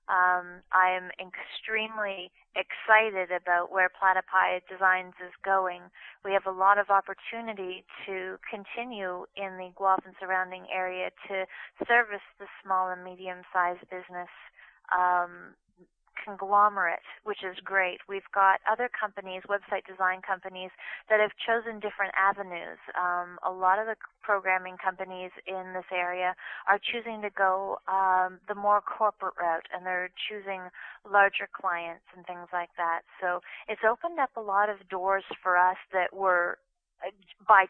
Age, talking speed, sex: 30-49, 145 wpm, female